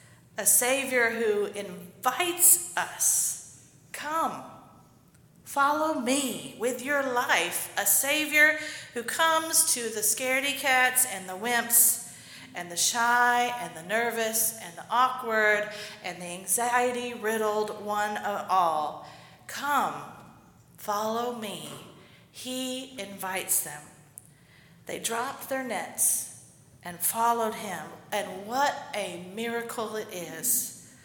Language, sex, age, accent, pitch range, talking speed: English, female, 40-59, American, 195-245 Hz, 110 wpm